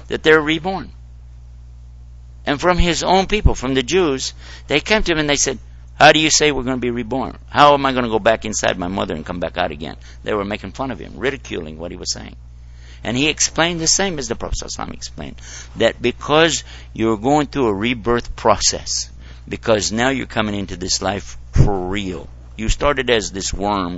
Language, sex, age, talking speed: English, male, 60-79, 215 wpm